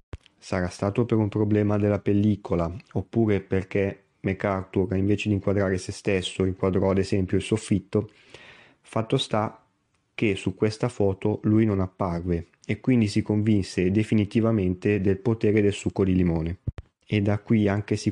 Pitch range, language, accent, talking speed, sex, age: 95-110 Hz, Italian, native, 150 wpm, male, 30-49